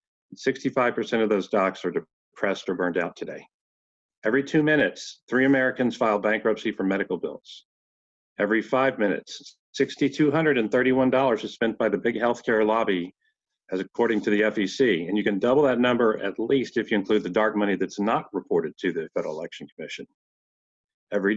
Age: 50-69